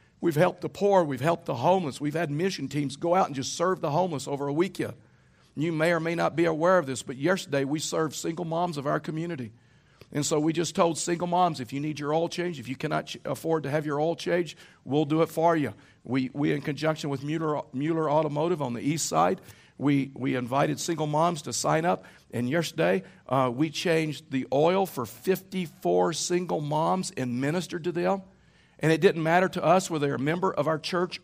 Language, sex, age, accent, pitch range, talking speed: English, male, 50-69, American, 145-175 Hz, 220 wpm